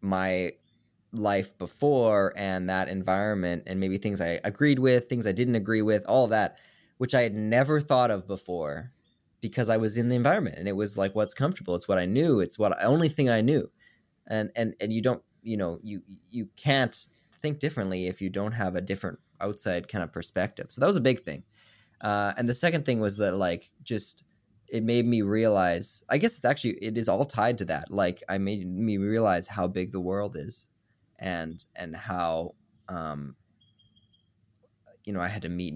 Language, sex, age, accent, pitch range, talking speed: English, male, 20-39, American, 95-115 Hz, 200 wpm